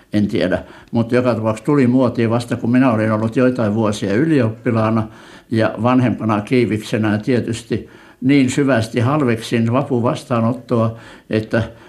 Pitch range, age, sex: 110-125 Hz, 60-79, male